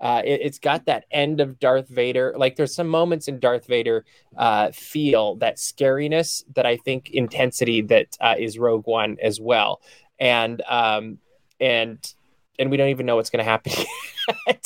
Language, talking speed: English, 180 wpm